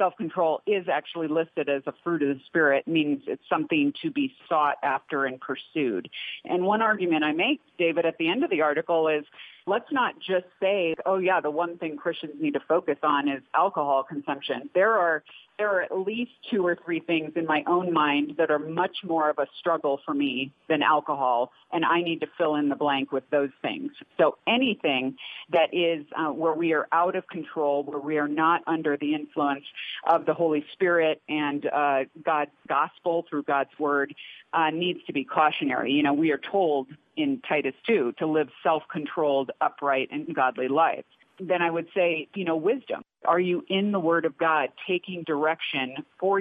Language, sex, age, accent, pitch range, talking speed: English, female, 40-59, American, 150-185 Hz, 195 wpm